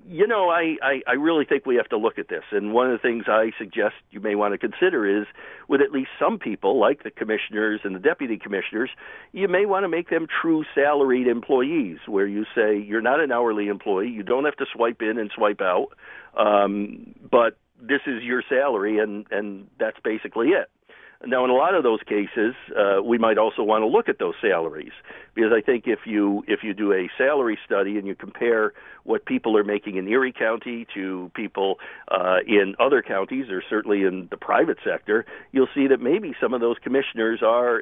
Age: 50-69